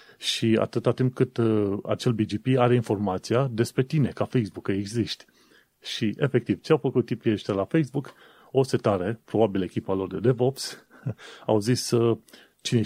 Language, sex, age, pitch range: Romanian, male, 30-49, 105-130 Hz